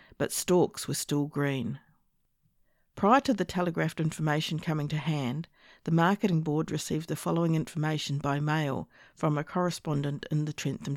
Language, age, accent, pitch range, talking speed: English, 50-69, Australian, 150-180 Hz, 155 wpm